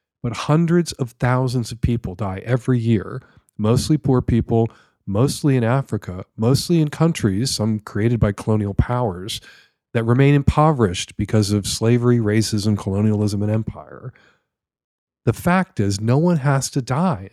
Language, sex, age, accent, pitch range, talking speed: English, male, 40-59, American, 105-140 Hz, 140 wpm